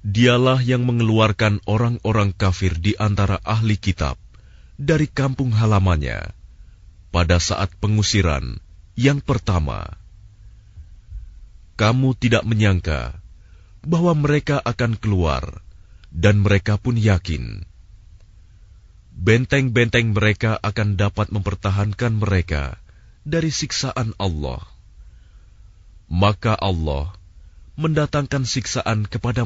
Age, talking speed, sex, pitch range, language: 30-49, 85 wpm, male, 90-115 Hz, Indonesian